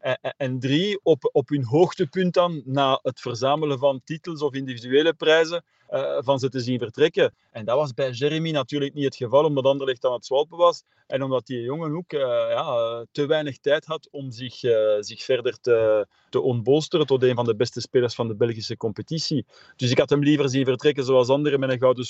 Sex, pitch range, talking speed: male, 120-150 Hz, 210 wpm